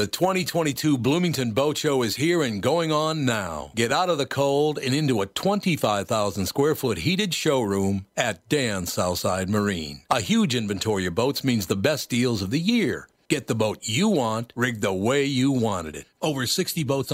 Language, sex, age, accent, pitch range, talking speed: English, male, 60-79, American, 115-155 Hz, 180 wpm